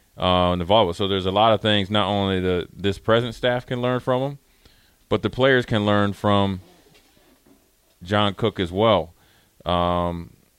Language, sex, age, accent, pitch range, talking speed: English, male, 20-39, American, 90-110 Hz, 165 wpm